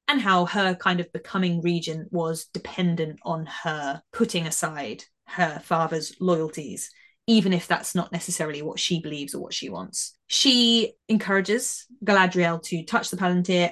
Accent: British